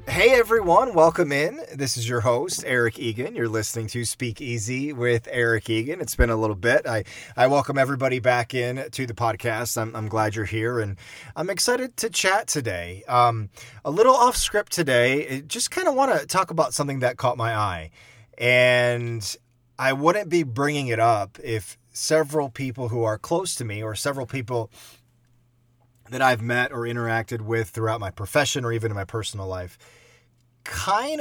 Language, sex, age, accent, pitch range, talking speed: English, male, 30-49, American, 115-130 Hz, 185 wpm